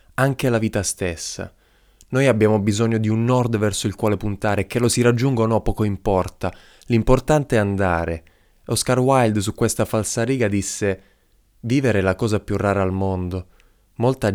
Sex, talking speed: male, 165 wpm